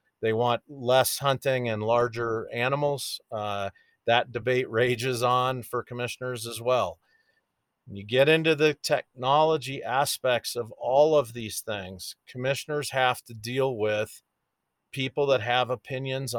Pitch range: 120-140 Hz